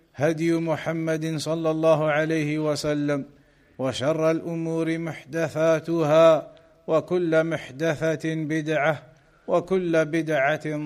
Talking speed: 95 wpm